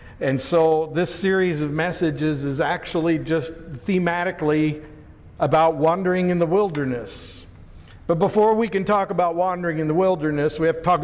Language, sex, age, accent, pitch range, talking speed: English, male, 60-79, American, 135-160 Hz, 160 wpm